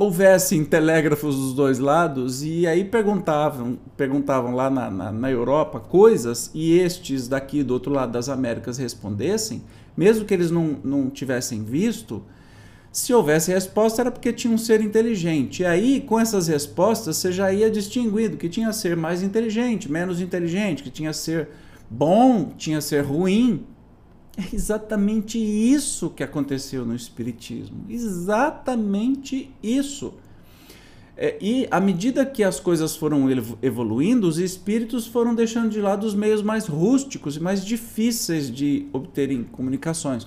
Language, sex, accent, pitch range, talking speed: Portuguese, male, Brazilian, 135-215 Hz, 145 wpm